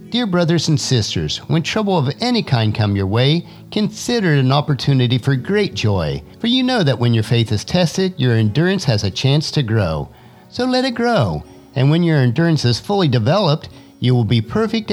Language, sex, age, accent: English, male, 50-69, American